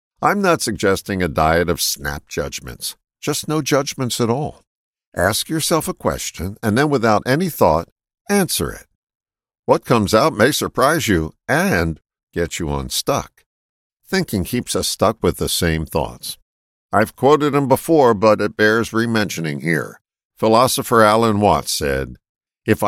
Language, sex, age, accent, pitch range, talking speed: English, male, 60-79, American, 90-150 Hz, 145 wpm